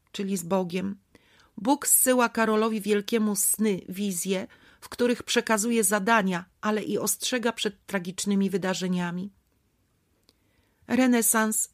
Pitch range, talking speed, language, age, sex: 185-230 Hz, 100 wpm, Polish, 40-59, female